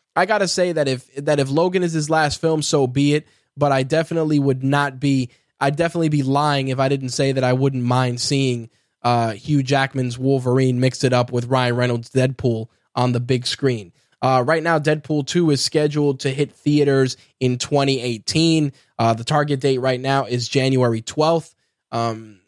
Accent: American